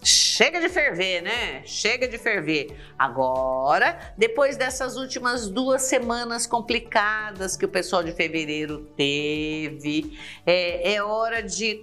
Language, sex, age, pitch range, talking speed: Portuguese, female, 50-69, 165-230 Hz, 120 wpm